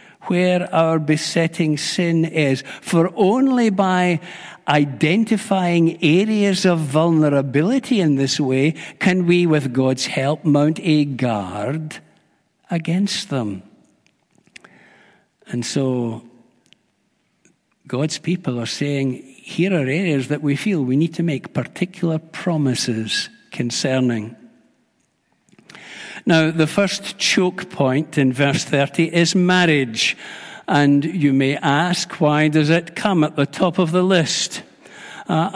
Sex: male